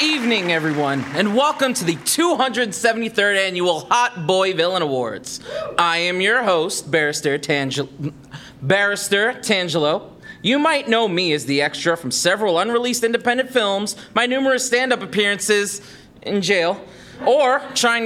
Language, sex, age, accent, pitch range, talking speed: English, male, 30-49, American, 170-235 Hz, 135 wpm